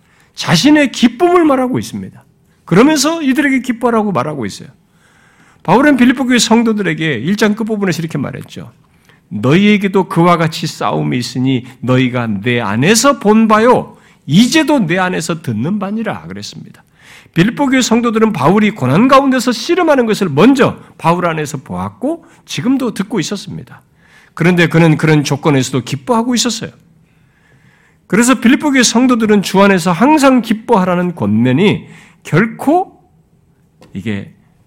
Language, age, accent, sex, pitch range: Korean, 50-69, native, male, 165-250 Hz